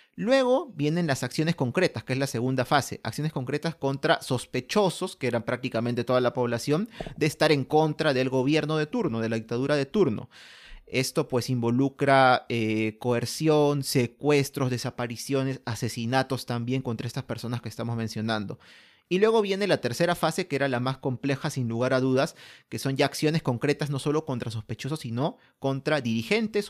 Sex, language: male, Spanish